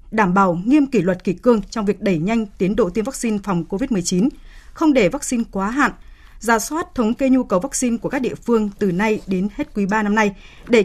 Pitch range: 195-255 Hz